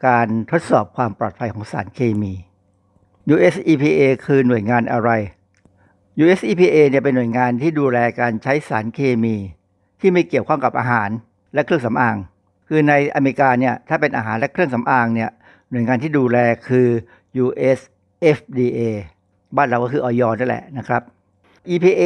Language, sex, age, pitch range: Thai, male, 60-79, 115-145 Hz